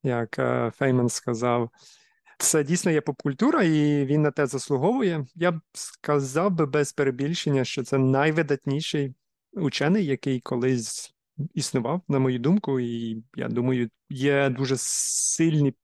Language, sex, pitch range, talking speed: Ukrainian, male, 125-155 Hz, 130 wpm